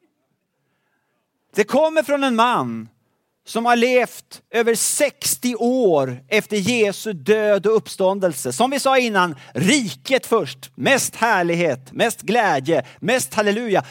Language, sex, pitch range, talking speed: Swedish, male, 180-240 Hz, 120 wpm